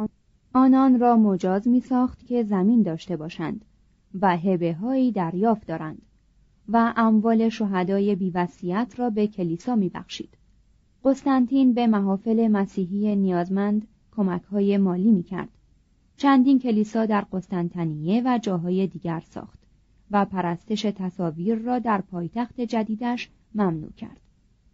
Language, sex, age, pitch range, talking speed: Persian, female, 30-49, 180-235 Hz, 120 wpm